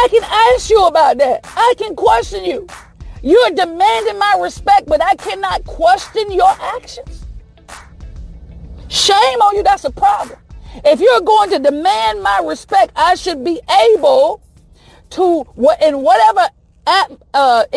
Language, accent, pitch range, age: English, American, 290-400 Hz, 50-69